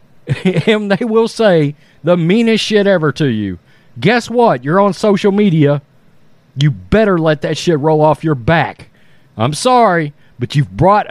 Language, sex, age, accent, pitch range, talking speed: English, male, 40-59, American, 145-220 Hz, 160 wpm